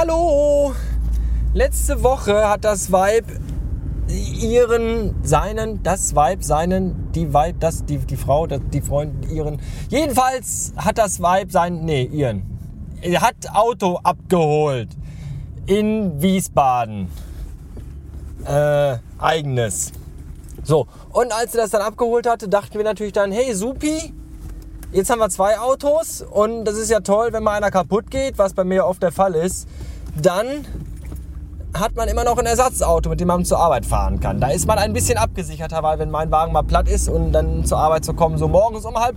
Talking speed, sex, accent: 165 wpm, male, German